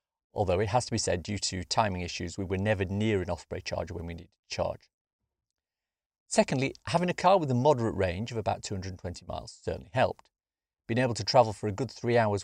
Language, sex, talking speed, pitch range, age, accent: English, male, 215 wpm, 95-120 Hz, 40-59, British